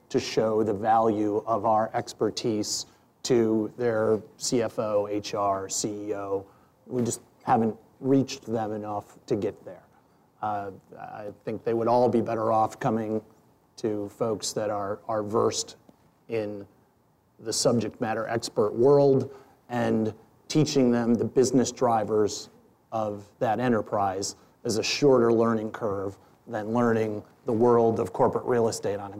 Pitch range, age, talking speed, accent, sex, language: 110-135 Hz, 30-49, 140 wpm, American, male, English